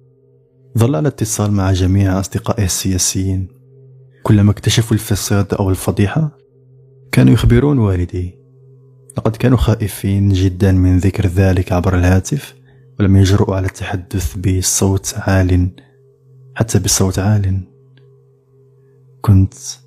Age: 20-39